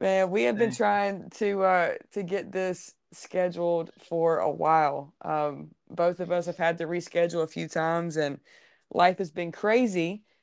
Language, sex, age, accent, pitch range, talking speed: English, female, 20-39, American, 165-190 Hz, 175 wpm